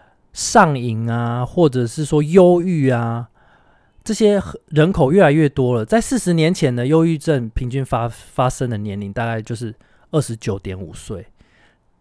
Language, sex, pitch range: Chinese, male, 115-170 Hz